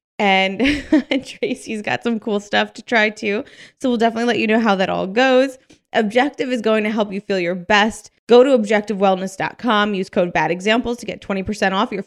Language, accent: English, American